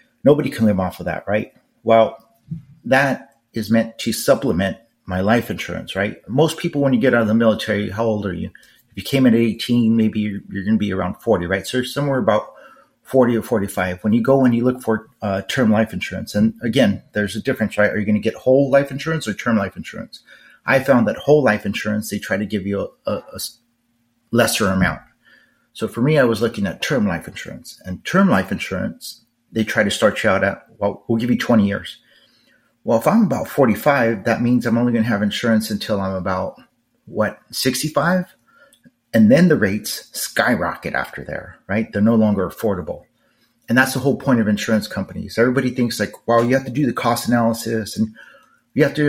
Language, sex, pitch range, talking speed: English, male, 105-125 Hz, 215 wpm